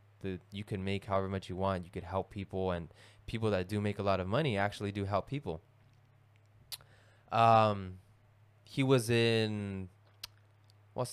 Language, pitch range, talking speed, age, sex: English, 100-115 Hz, 150 wpm, 20-39, male